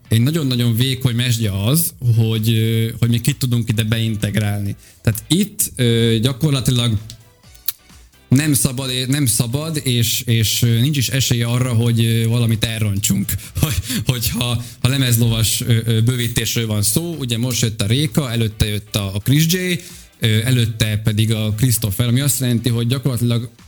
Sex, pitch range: male, 115-140 Hz